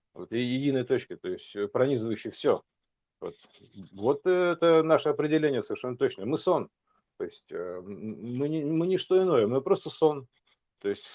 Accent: native